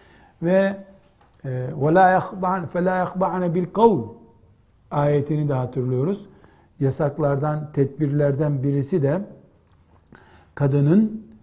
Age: 60-79